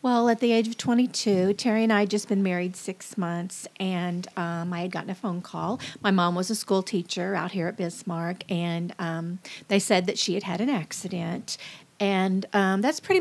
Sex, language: female, English